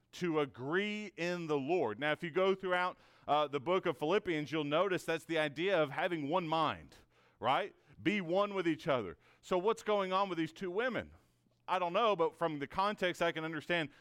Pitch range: 145-175 Hz